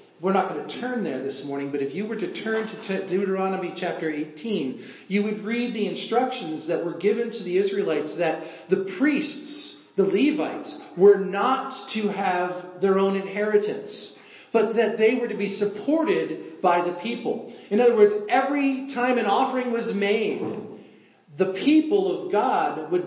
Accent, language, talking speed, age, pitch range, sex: American, English, 170 wpm, 40-59, 195-255 Hz, male